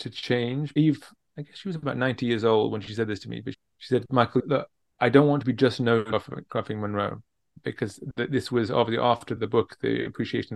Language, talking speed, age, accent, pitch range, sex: English, 235 wpm, 30-49, British, 110-130 Hz, male